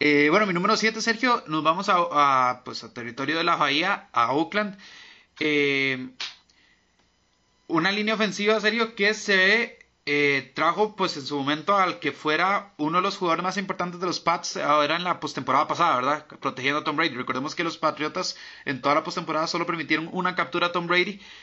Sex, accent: male, Mexican